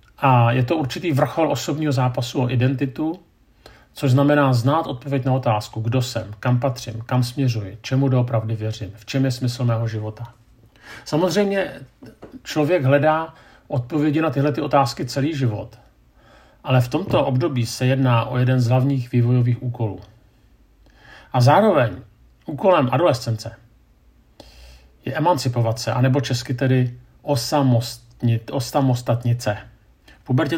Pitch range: 115-140 Hz